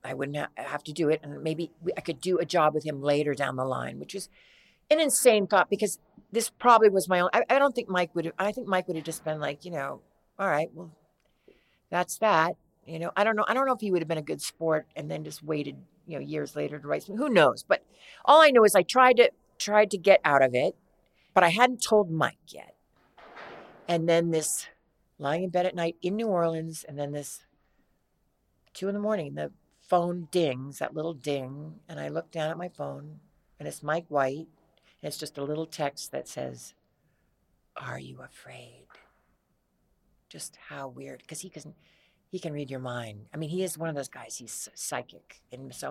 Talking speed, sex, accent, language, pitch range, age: 220 wpm, female, American, English, 145-190 Hz, 50-69